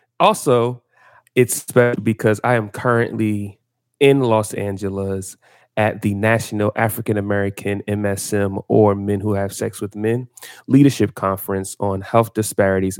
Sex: male